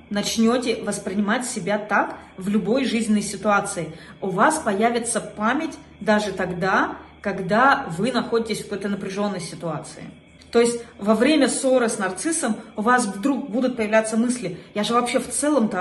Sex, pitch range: female, 195-250 Hz